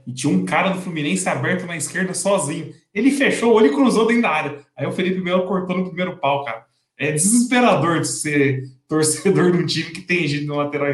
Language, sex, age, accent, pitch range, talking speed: Portuguese, male, 20-39, Brazilian, 140-190 Hz, 220 wpm